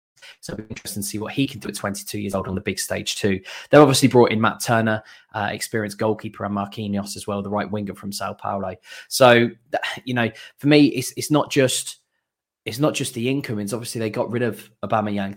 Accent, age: British, 20-39